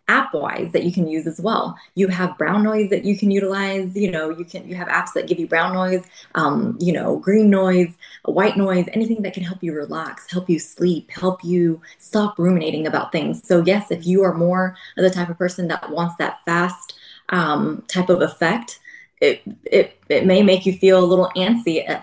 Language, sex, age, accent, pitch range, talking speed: English, female, 20-39, American, 170-195 Hz, 220 wpm